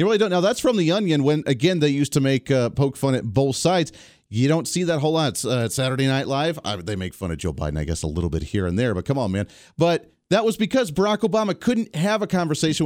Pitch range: 115-175 Hz